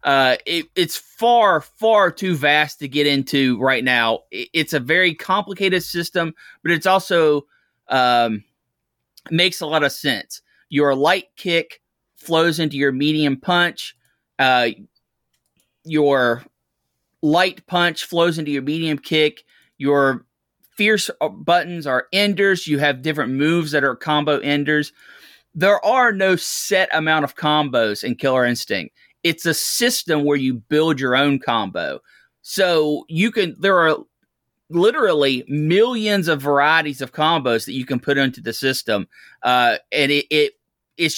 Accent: American